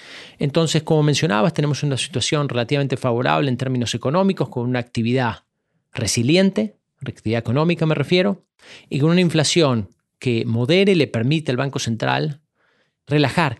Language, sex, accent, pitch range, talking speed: Spanish, male, Argentinian, 120-160 Hz, 140 wpm